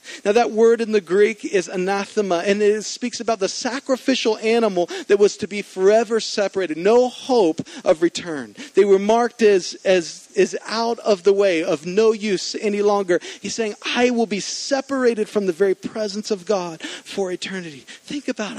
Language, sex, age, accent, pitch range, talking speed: English, male, 40-59, American, 175-245 Hz, 180 wpm